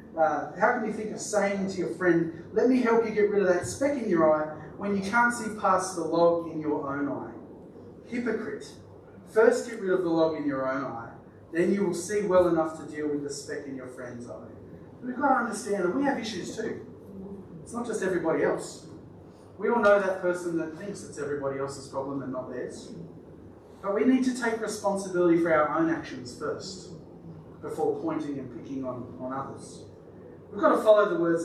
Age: 30-49